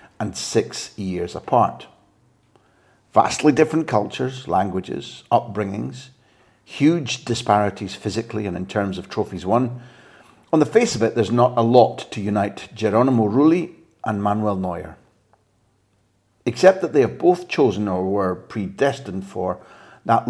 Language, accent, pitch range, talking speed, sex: English, British, 100-130 Hz, 135 wpm, male